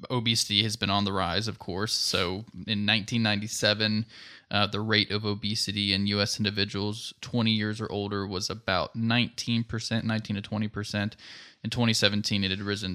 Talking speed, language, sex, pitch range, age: 160 wpm, English, male, 105-115 Hz, 20-39